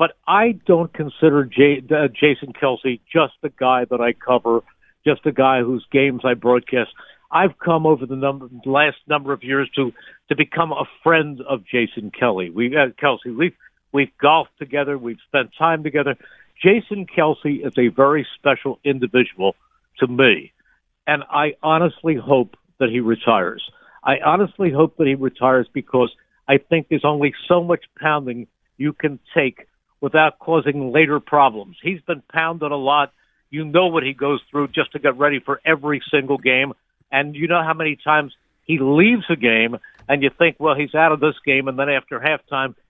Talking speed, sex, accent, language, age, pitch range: 180 wpm, male, American, English, 60-79, 130-155 Hz